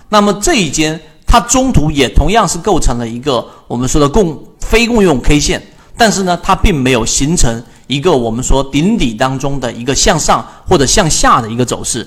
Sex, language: male, Chinese